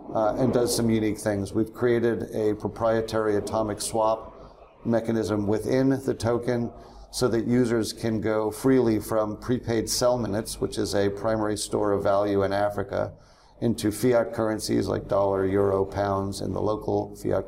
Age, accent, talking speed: 50-69, American, 160 wpm